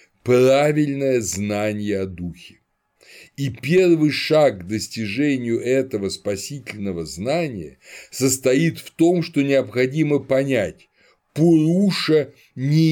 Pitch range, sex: 100-155 Hz, male